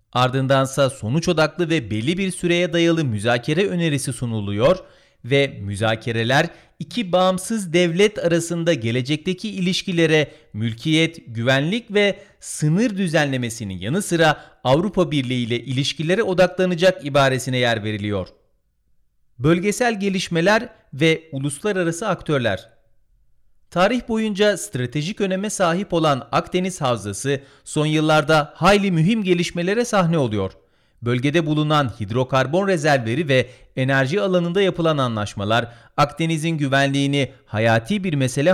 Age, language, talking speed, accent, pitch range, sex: 40-59, Turkish, 105 wpm, native, 125-180 Hz, male